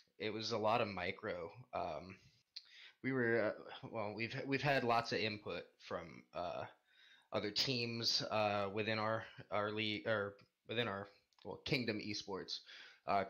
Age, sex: 20-39, male